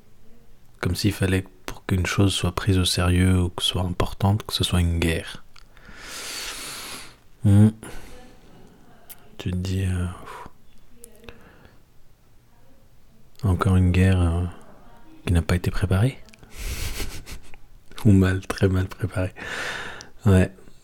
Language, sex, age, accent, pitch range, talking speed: French, male, 50-69, French, 85-100 Hz, 115 wpm